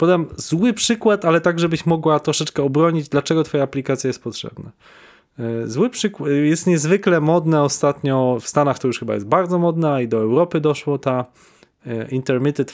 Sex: male